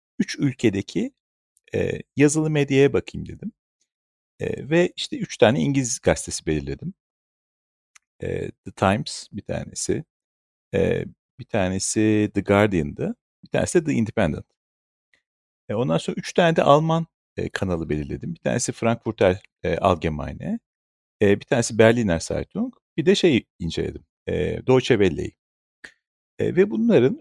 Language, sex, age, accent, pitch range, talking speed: Turkish, male, 50-69, native, 95-155 Hz, 110 wpm